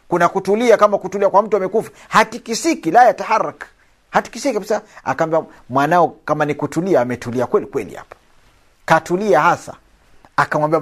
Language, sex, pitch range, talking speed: Swahili, male, 135-185 Hz, 135 wpm